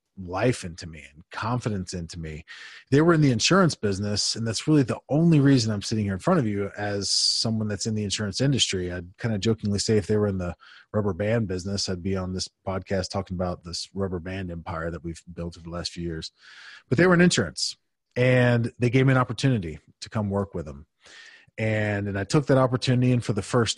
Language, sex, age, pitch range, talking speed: English, male, 30-49, 95-125 Hz, 230 wpm